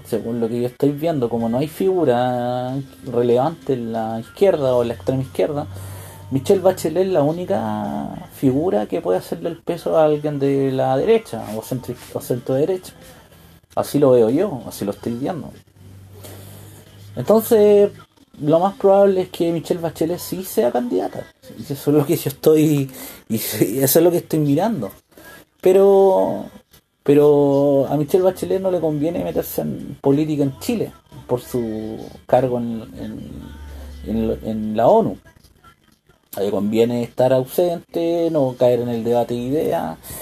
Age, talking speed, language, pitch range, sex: 30-49, 150 wpm, Spanish, 115-160 Hz, male